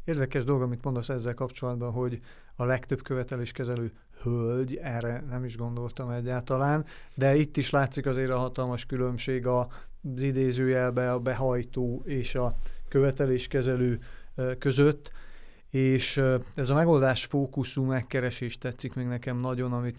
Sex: male